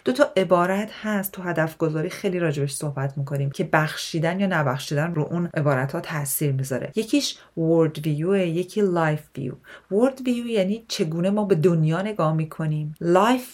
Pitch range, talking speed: 155-205 Hz, 155 wpm